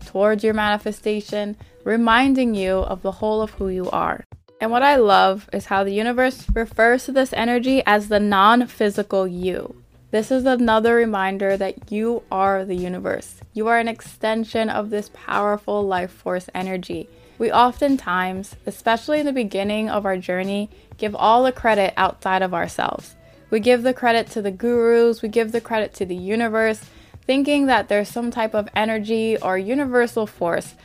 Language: English